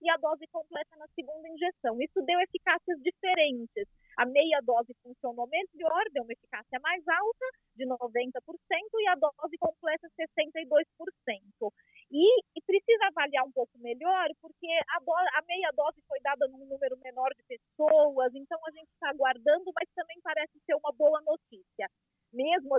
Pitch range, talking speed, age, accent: 270-360 Hz, 160 wpm, 30-49, Brazilian